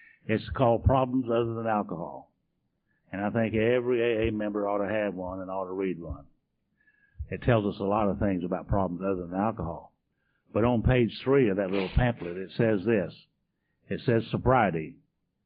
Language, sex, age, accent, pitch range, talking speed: English, male, 60-79, American, 100-125 Hz, 185 wpm